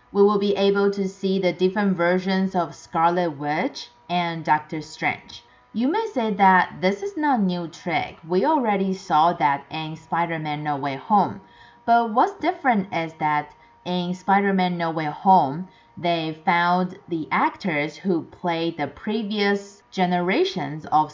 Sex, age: female, 20-39